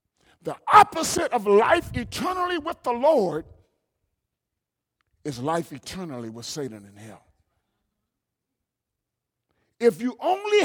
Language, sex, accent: English, male, American